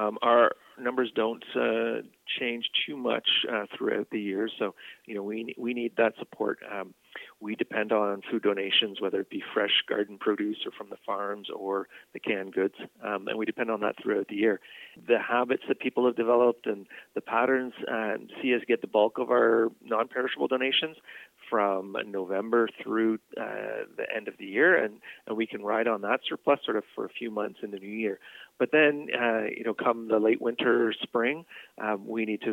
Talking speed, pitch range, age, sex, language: 205 wpm, 105-115 Hz, 40-59, male, English